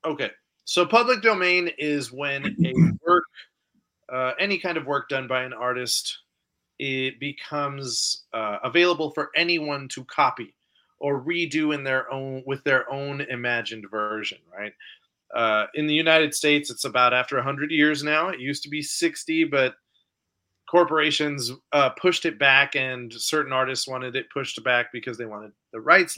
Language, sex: English, male